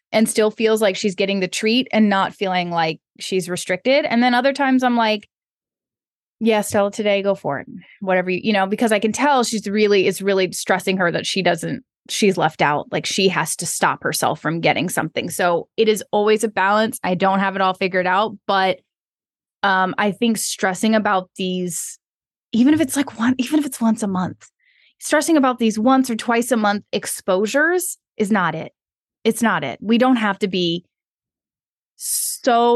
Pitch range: 195-250 Hz